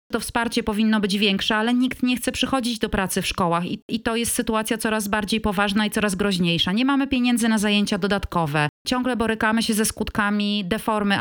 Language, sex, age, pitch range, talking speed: Polish, female, 30-49, 185-235 Hz, 200 wpm